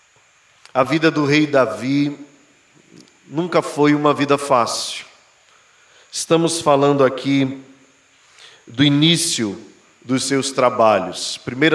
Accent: Brazilian